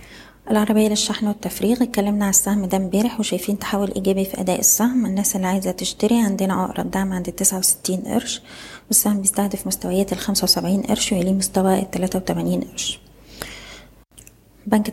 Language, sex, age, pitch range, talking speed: Arabic, female, 20-39, 190-215 Hz, 150 wpm